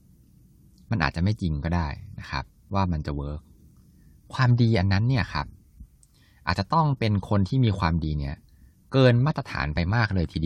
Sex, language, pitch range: male, Thai, 80-110 Hz